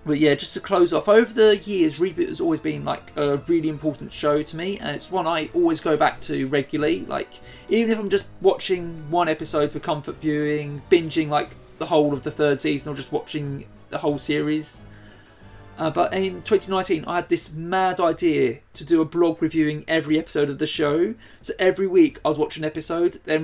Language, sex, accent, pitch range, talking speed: English, male, British, 150-195 Hz, 205 wpm